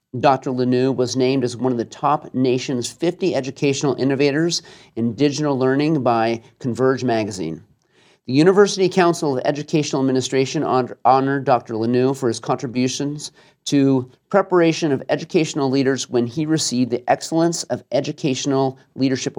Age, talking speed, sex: 40-59, 135 wpm, male